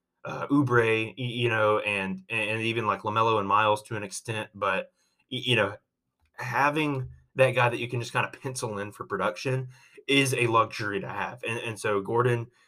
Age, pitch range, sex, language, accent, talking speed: 20-39, 105-130 Hz, male, English, American, 185 wpm